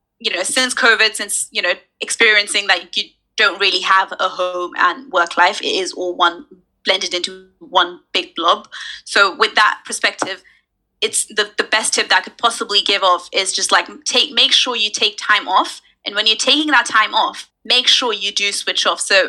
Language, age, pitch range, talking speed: English, 20-39, 195-240 Hz, 210 wpm